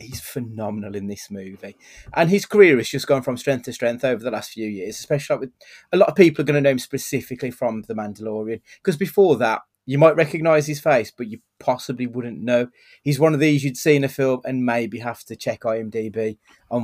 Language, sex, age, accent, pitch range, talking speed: English, male, 30-49, British, 115-140 Hz, 230 wpm